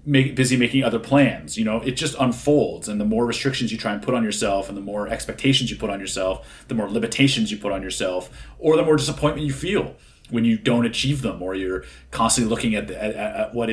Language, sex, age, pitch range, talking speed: English, male, 30-49, 110-135 Hz, 240 wpm